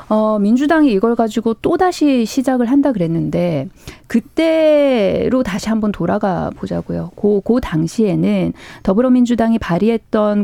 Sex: female